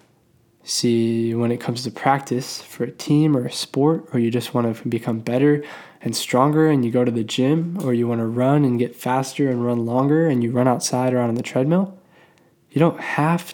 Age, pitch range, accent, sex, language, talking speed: 10-29, 120-145 Hz, American, male, English, 215 wpm